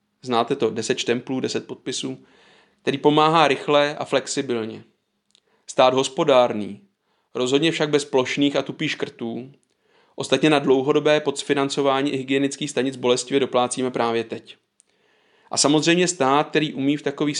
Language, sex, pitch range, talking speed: Czech, male, 125-145 Hz, 130 wpm